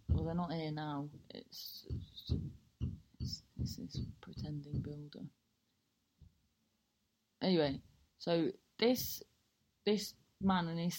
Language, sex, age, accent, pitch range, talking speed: English, female, 30-49, British, 170-235 Hz, 85 wpm